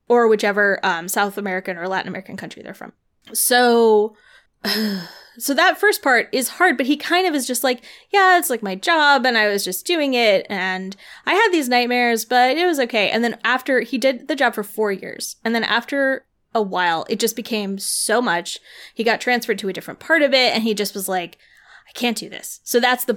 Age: 20-39